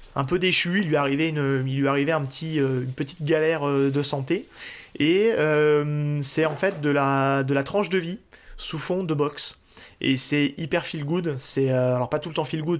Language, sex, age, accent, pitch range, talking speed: French, male, 20-39, French, 135-170 Hz, 220 wpm